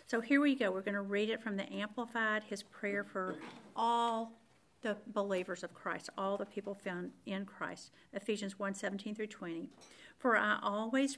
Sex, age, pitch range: female, 50-69, 195-240 Hz